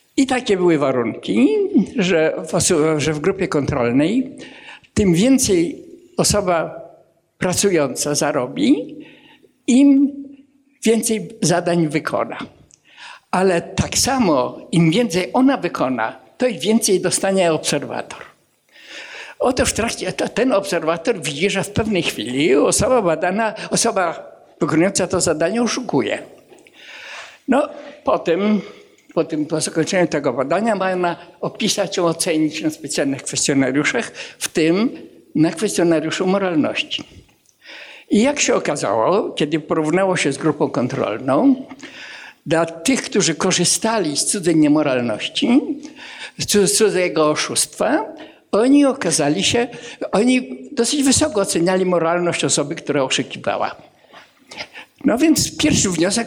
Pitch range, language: 165-265 Hz, Polish